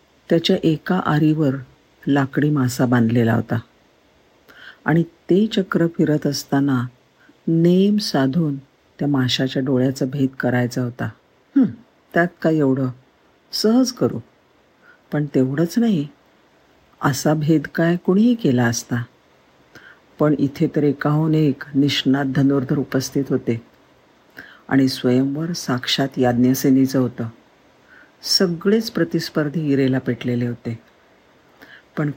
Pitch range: 130-160 Hz